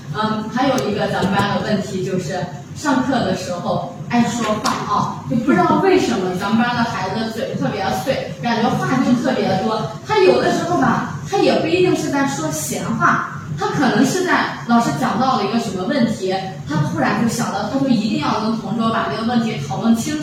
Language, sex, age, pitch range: Chinese, female, 20-39, 185-235 Hz